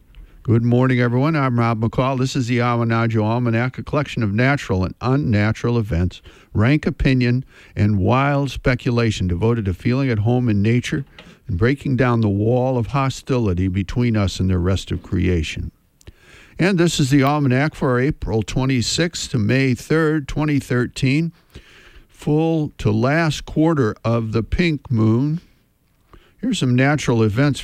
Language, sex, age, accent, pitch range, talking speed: English, male, 60-79, American, 110-145 Hz, 150 wpm